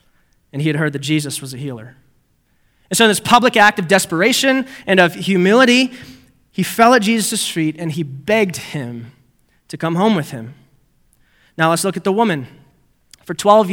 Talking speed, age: 185 wpm, 20-39